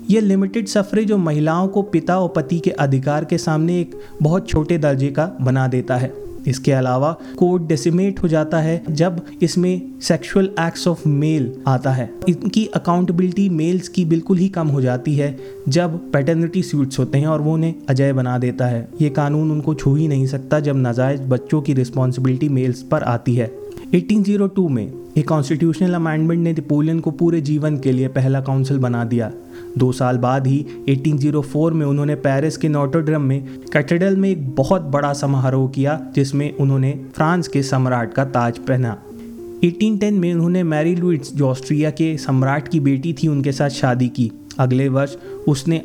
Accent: native